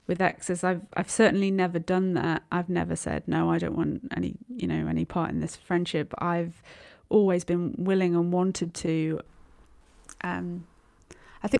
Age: 20-39